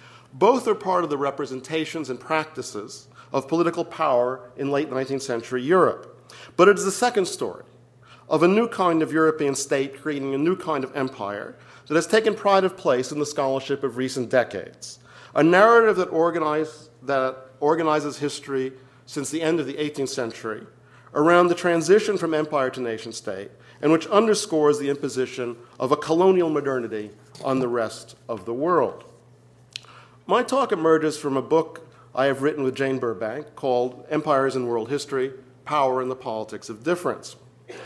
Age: 50-69